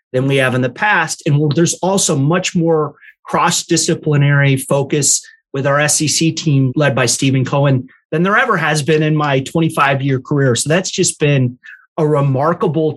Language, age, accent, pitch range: English, 30-49, American, 140-175 Hz